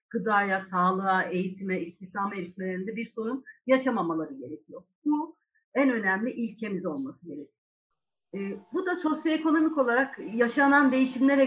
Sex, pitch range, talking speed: female, 190-270 Hz, 115 wpm